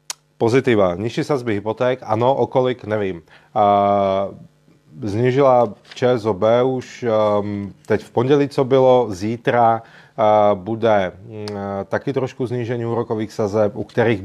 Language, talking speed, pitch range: Czech, 100 wpm, 100-120 Hz